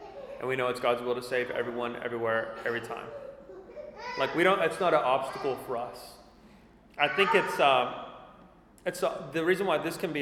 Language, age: English, 30-49